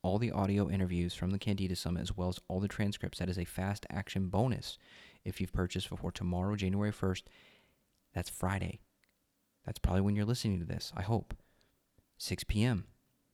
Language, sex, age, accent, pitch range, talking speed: English, male, 30-49, American, 90-110 Hz, 180 wpm